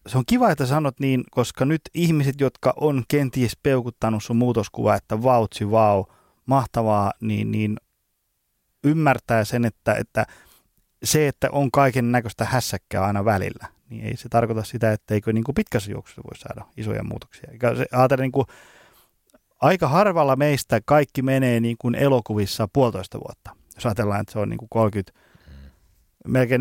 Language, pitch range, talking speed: Finnish, 105-135 Hz, 150 wpm